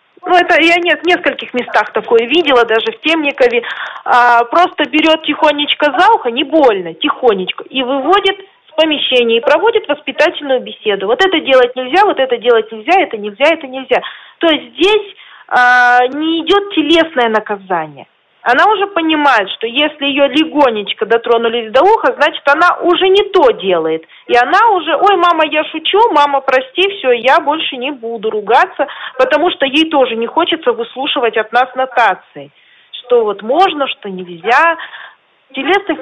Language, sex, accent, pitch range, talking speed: Russian, female, native, 240-330 Hz, 160 wpm